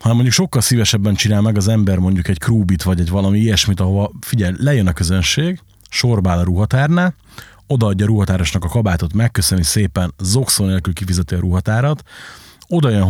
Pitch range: 95-130 Hz